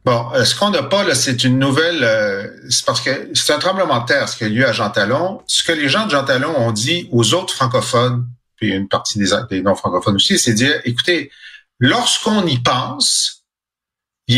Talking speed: 210 wpm